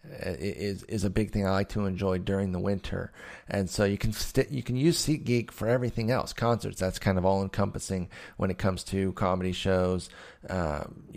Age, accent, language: 30-49, American, English